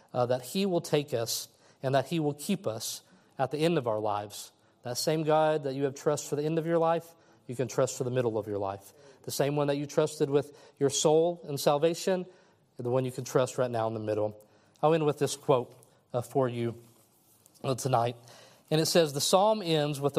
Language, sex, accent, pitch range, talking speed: English, male, American, 125-155 Hz, 230 wpm